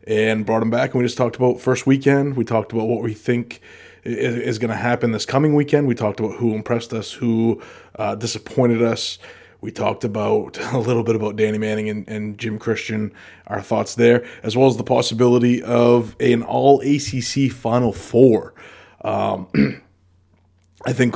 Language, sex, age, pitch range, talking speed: English, male, 20-39, 105-120 Hz, 180 wpm